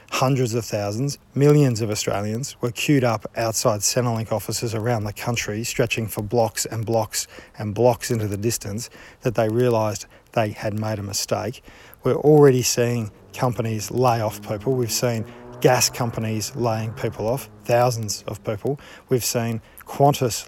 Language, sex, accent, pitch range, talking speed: English, male, Australian, 110-135 Hz, 155 wpm